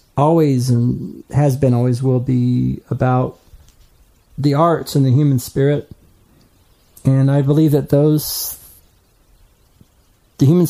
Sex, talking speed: male, 120 wpm